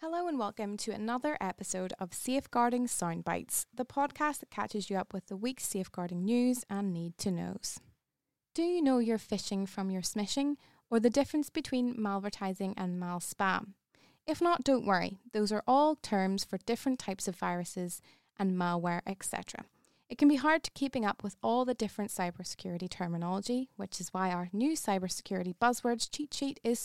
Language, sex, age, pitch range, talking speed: English, female, 20-39, 185-245 Hz, 170 wpm